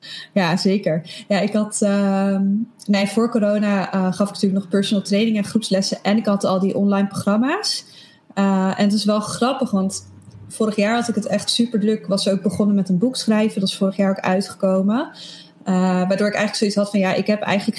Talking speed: 215 wpm